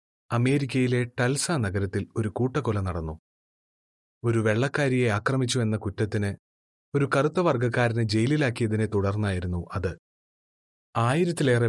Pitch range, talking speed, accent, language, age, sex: 100-125 Hz, 85 wpm, native, Malayalam, 30-49, male